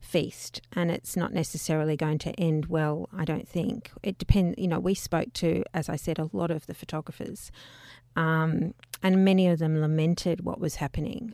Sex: female